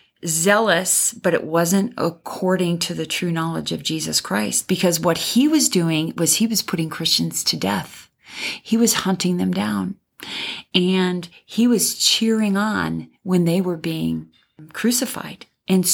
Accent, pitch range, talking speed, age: American, 175-230 Hz, 150 wpm, 40-59